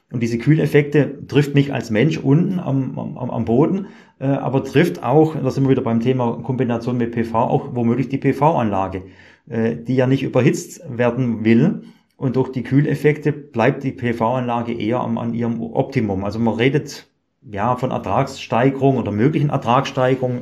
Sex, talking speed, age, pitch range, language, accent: male, 160 wpm, 30-49, 115-140 Hz, German, German